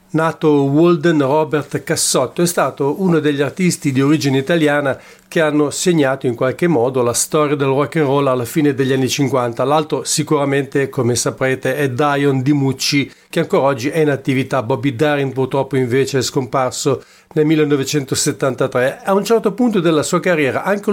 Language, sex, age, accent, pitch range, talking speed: English, male, 50-69, Italian, 140-170 Hz, 170 wpm